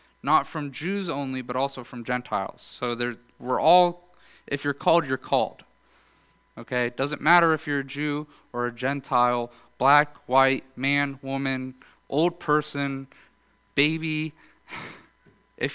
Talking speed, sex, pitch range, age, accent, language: 130 wpm, male, 120-150 Hz, 30-49, American, English